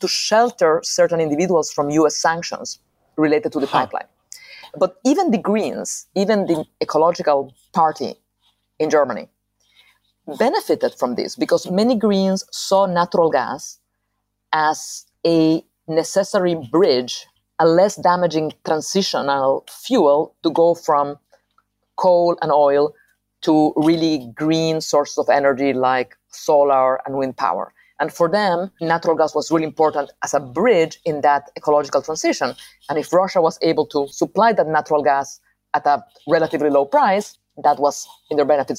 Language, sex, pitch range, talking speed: English, female, 145-185 Hz, 140 wpm